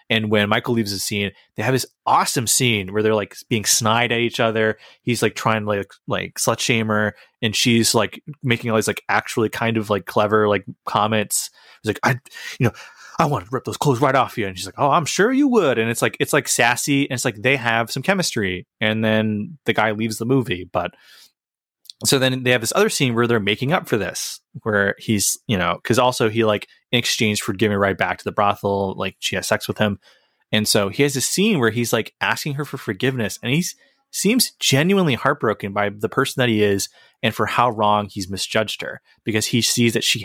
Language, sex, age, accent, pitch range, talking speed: English, male, 20-39, American, 105-130 Hz, 235 wpm